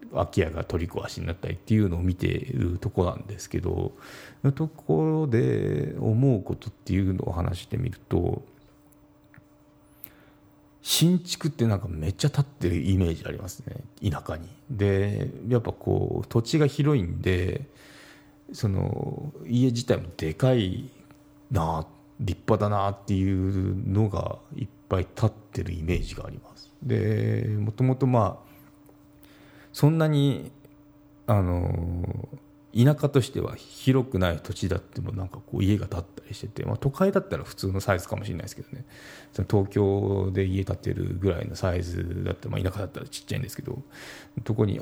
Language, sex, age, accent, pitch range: Japanese, male, 40-59, native, 95-135 Hz